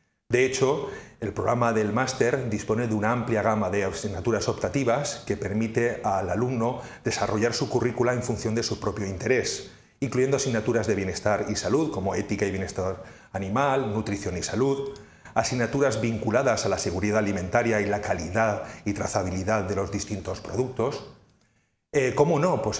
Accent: Spanish